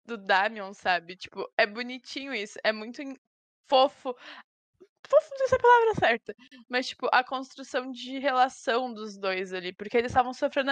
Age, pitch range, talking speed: 10-29, 225-285 Hz, 180 wpm